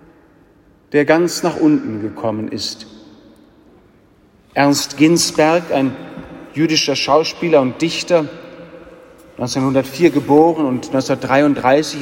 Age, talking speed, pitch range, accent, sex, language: 40-59, 85 wpm, 135-160 Hz, German, male, German